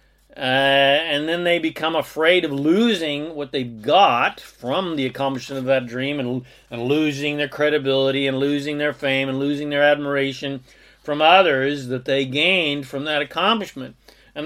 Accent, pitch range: American, 135-170 Hz